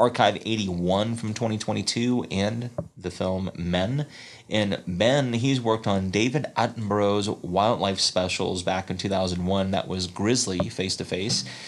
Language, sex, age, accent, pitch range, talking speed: English, male, 30-49, American, 95-110 Hz, 125 wpm